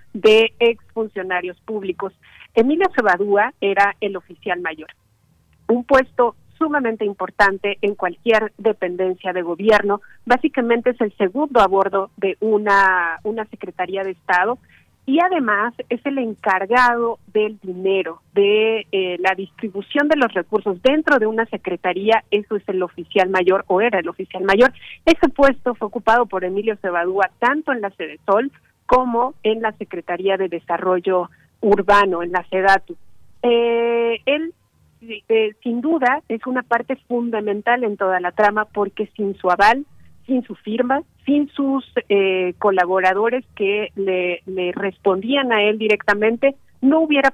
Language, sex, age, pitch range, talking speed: Spanish, female, 40-59, 190-240 Hz, 145 wpm